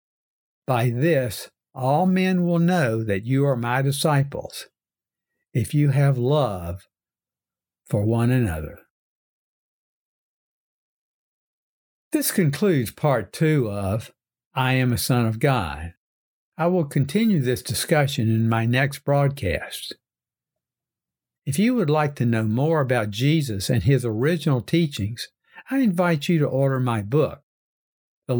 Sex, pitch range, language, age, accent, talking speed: male, 120-155 Hz, English, 60-79, American, 125 wpm